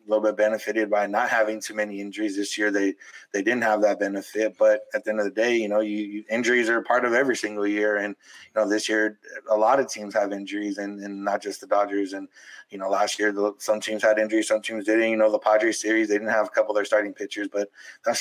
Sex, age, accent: male, 20-39, American